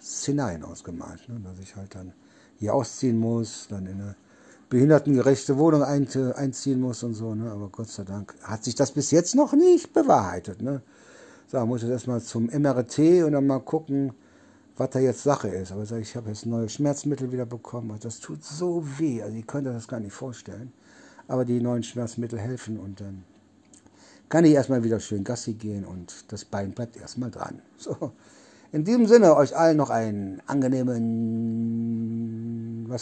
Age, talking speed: 60-79, 190 wpm